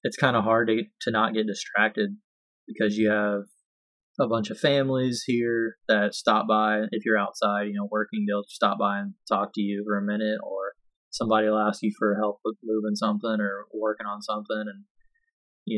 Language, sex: English, male